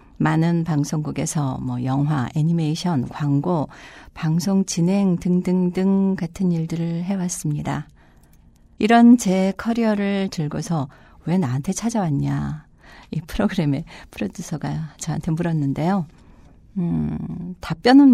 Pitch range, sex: 145-190 Hz, female